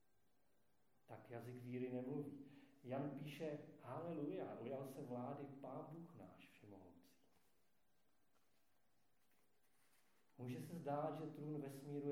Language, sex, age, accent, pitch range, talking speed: Czech, male, 40-59, native, 120-145 Hz, 95 wpm